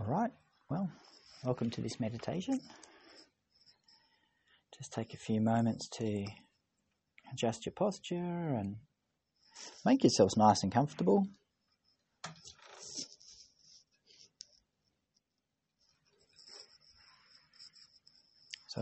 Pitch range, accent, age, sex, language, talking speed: 115-145 Hz, Australian, 30-49, male, English, 70 wpm